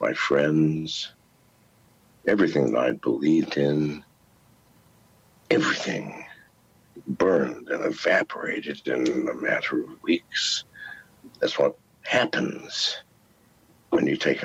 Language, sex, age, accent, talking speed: English, male, 60-79, American, 90 wpm